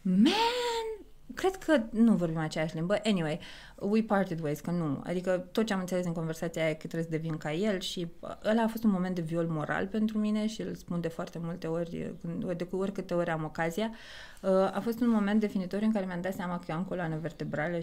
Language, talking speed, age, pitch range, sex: Romanian, 220 wpm, 20-39, 165-215 Hz, female